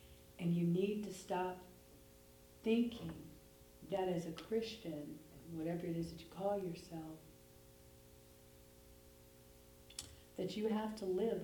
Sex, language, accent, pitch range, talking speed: female, English, American, 135-190 Hz, 115 wpm